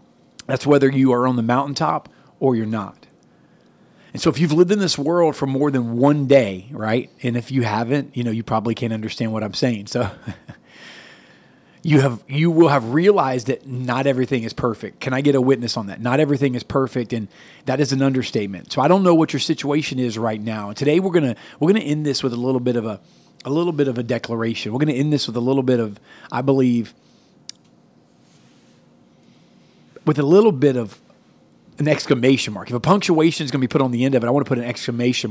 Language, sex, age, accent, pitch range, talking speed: English, male, 40-59, American, 120-150 Hz, 225 wpm